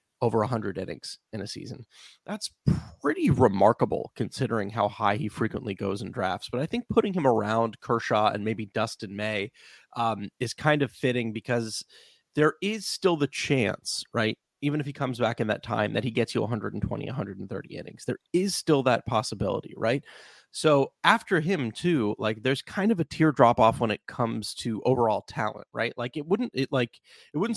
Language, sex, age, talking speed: English, male, 30-49, 185 wpm